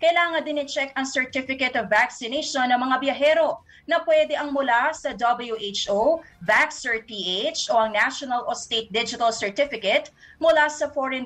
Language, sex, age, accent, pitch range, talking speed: English, female, 20-39, Filipino, 235-290 Hz, 145 wpm